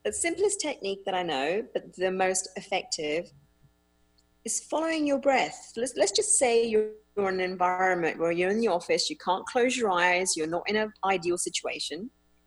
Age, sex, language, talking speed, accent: 40-59, female, English, 185 wpm, British